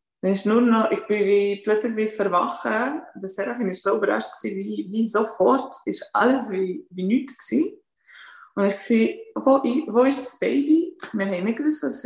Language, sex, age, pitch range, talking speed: German, female, 20-39, 180-240 Hz, 185 wpm